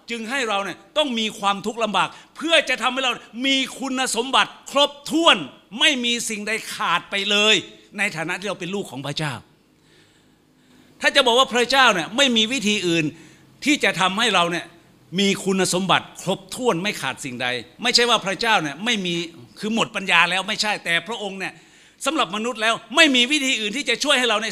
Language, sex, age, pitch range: Thai, male, 60-79, 145-225 Hz